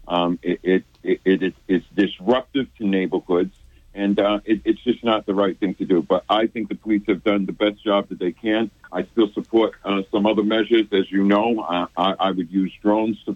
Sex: male